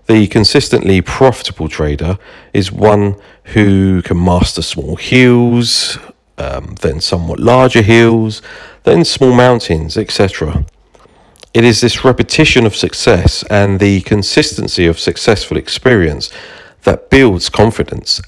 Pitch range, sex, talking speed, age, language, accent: 85-110 Hz, male, 115 wpm, 40-59, English, British